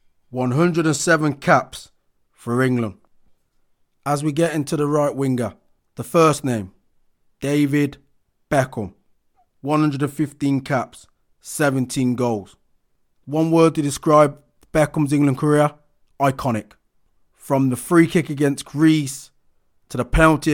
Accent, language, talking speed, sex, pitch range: British, English, 110 wpm, male, 130-150 Hz